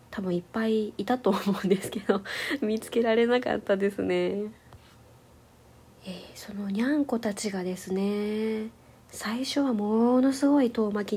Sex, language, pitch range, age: female, Japanese, 185-245 Hz, 20-39